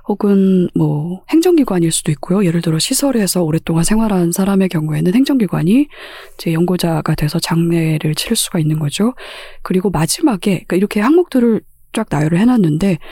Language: Korean